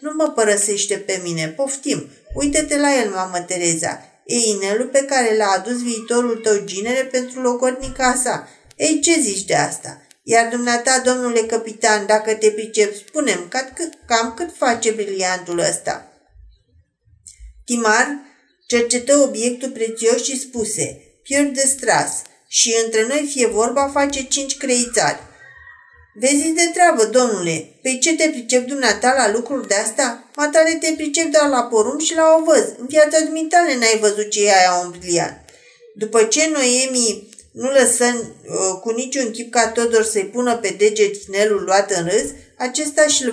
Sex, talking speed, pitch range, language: female, 150 wpm, 215-275 Hz, Romanian